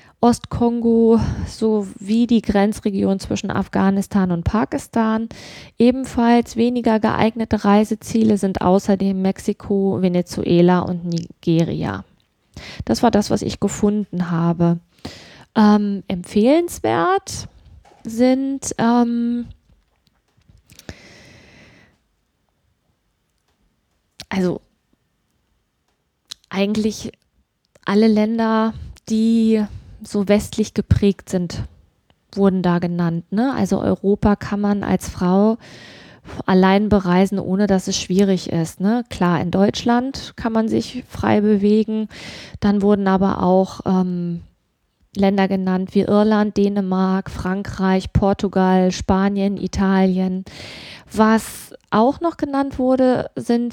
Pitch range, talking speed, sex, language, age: 195-235 Hz, 90 wpm, female, German, 20-39